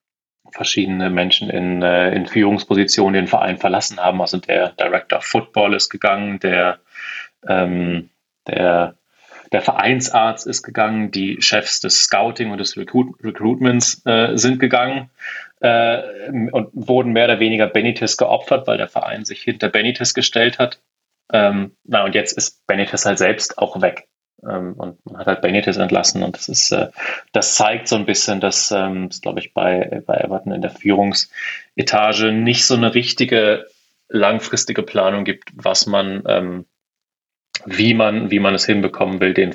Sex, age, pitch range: male, 30-49, 95-115 Hz